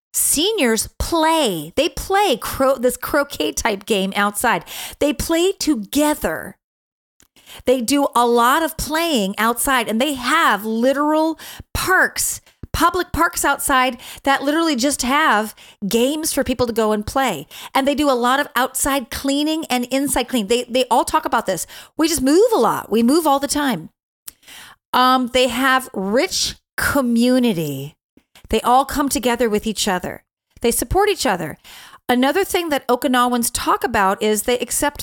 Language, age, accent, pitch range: English, 30-49, American, 230-285 Hz